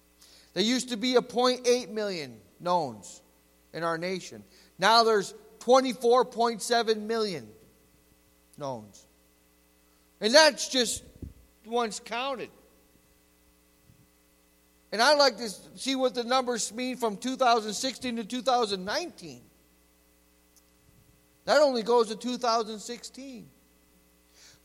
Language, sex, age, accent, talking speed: English, male, 50-69, American, 95 wpm